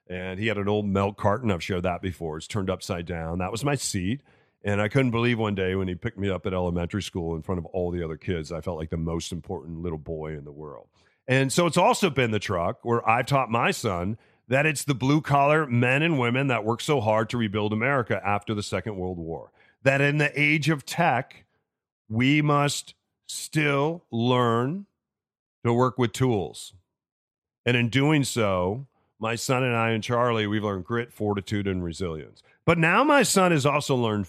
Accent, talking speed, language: American, 210 wpm, English